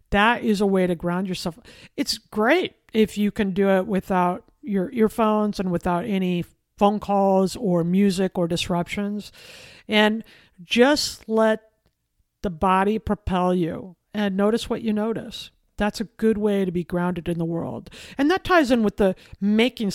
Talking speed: 165 wpm